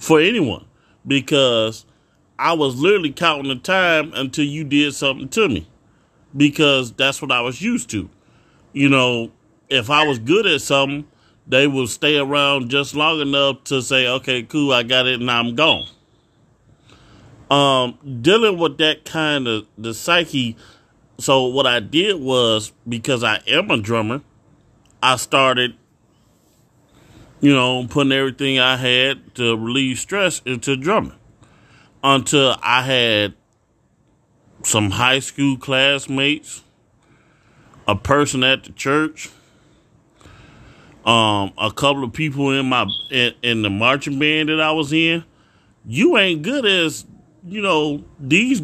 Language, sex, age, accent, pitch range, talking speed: English, male, 30-49, American, 125-155 Hz, 140 wpm